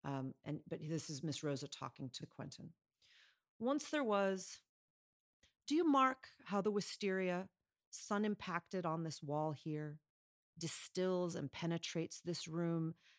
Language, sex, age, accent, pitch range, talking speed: English, female, 40-59, American, 155-210 Hz, 130 wpm